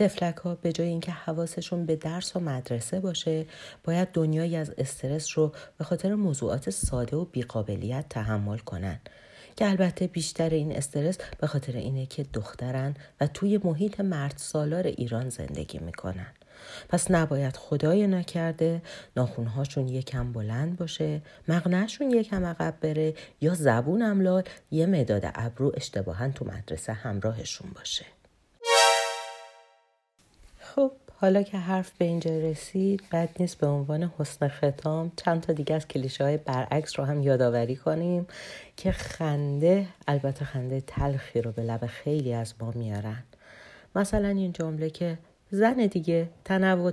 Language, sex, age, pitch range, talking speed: Persian, female, 40-59, 125-175 Hz, 140 wpm